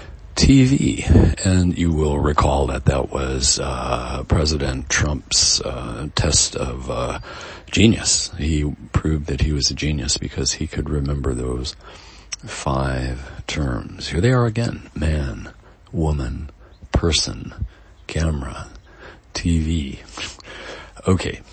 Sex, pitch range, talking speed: male, 70-85 Hz, 110 wpm